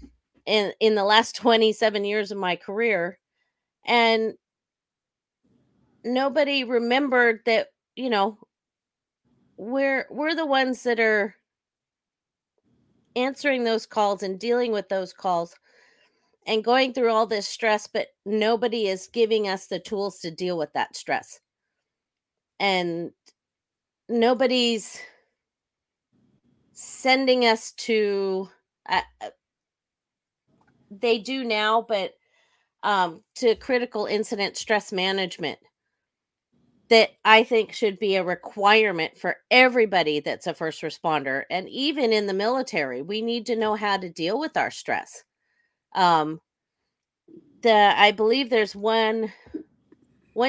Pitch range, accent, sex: 200-245 Hz, American, female